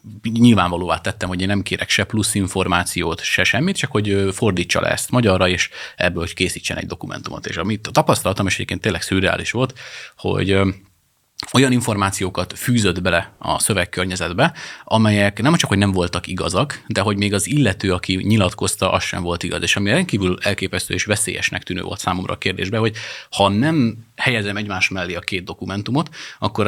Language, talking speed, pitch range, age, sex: Hungarian, 175 wpm, 90-110 Hz, 30-49, male